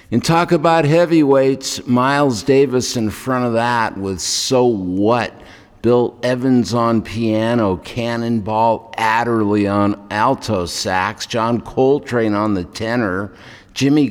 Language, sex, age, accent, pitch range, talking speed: English, male, 50-69, American, 100-130 Hz, 120 wpm